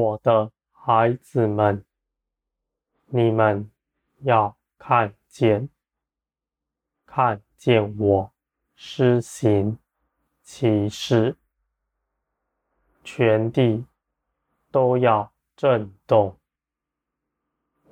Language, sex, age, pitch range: Chinese, male, 20-39, 85-120 Hz